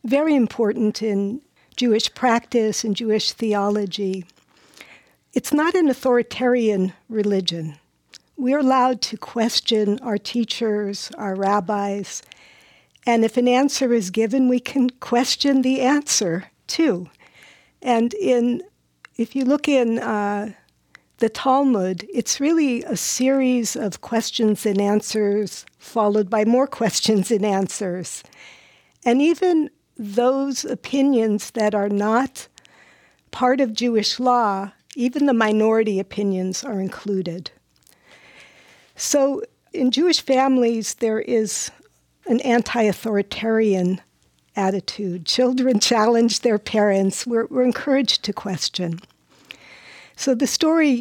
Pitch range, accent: 205-250 Hz, American